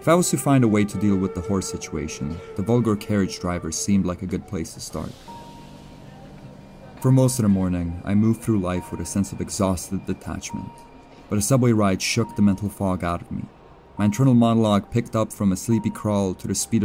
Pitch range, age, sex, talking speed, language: 90-110 Hz, 30-49, male, 220 wpm, English